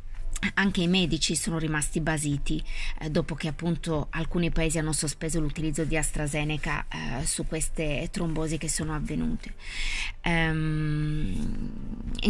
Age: 20-39